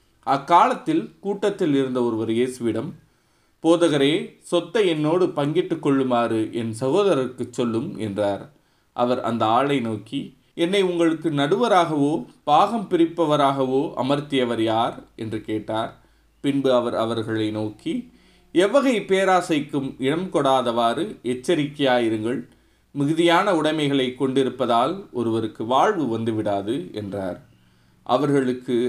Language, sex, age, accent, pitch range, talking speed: Tamil, male, 30-49, native, 115-165 Hz, 90 wpm